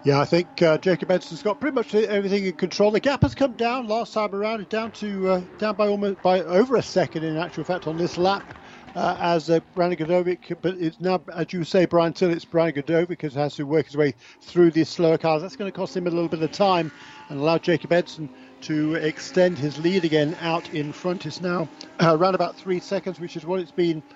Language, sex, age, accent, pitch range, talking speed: English, male, 50-69, British, 160-190 Hz, 240 wpm